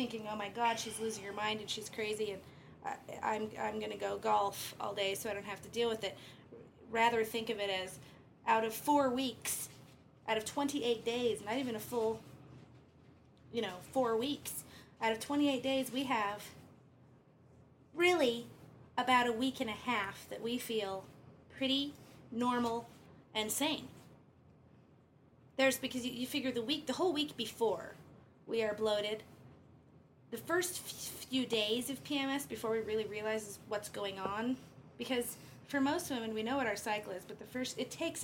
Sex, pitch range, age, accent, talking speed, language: female, 205-245 Hz, 30-49, American, 175 wpm, English